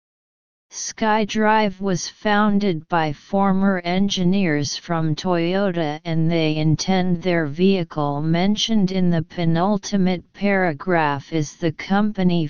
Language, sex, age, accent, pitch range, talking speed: English, female, 40-59, American, 155-195 Hz, 100 wpm